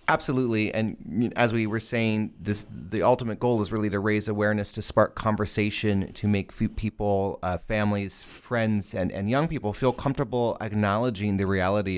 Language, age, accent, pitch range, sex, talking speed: English, 30-49, American, 100-120 Hz, male, 170 wpm